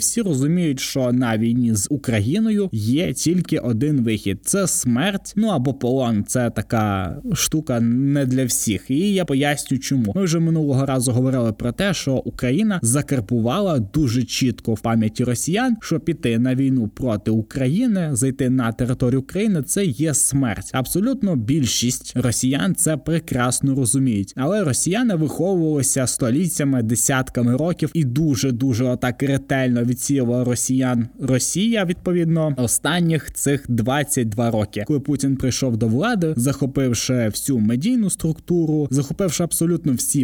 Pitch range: 125-160 Hz